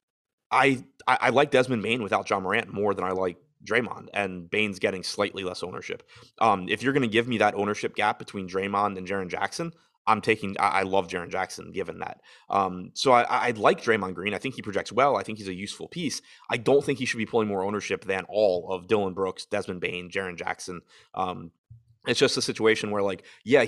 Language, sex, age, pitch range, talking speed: English, male, 20-39, 95-120 Hz, 225 wpm